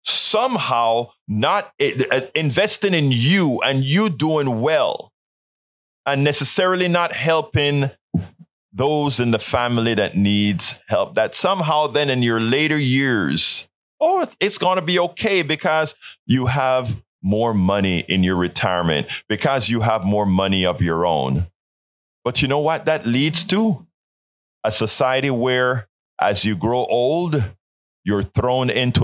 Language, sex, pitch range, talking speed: English, male, 110-180 Hz, 135 wpm